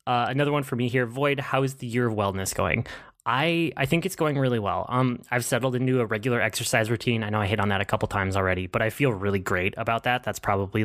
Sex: male